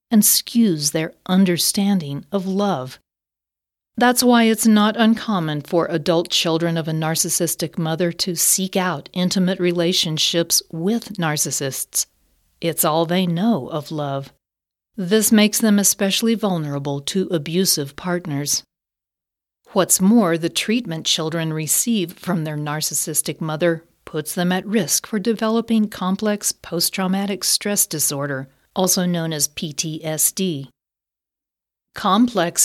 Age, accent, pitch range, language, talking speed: 40-59, American, 160-200 Hz, English, 120 wpm